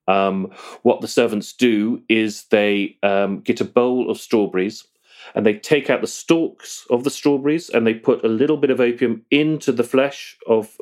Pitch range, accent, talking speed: 95-120 Hz, British, 190 wpm